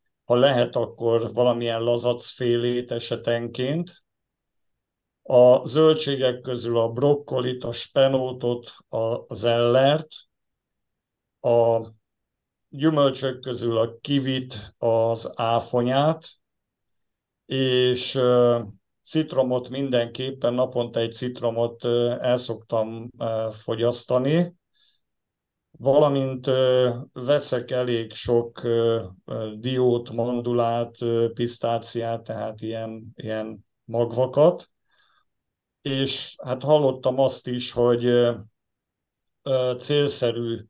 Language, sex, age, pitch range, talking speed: Hungarian, male, 50-69, 115-130 Hz, 75 wpm